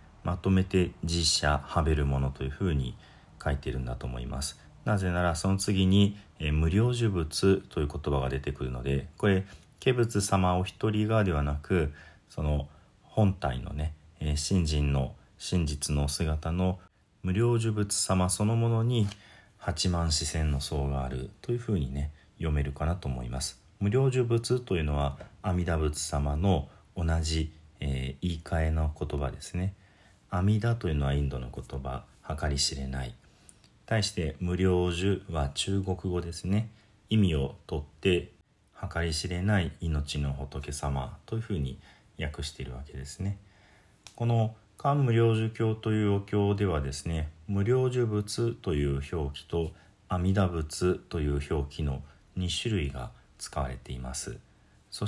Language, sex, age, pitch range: Japanese, male, 40-59, 75-100 Hz